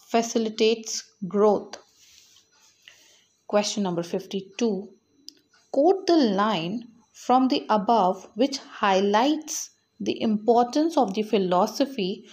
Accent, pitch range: Indian, 195-245 Hz